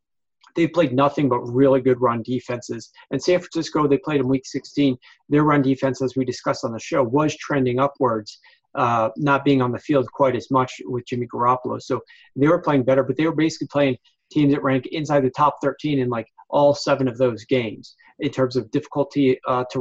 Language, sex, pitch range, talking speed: English, male, 125-145 Hz, 210 wpm